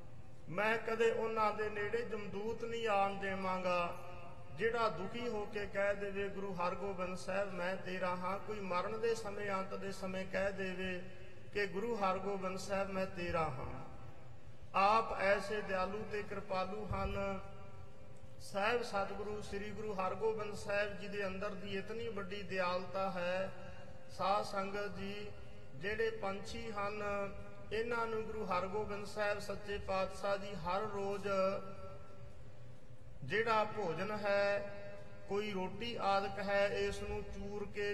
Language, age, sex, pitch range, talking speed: English, 50-69, male, 180-210 Hz, 110 wpm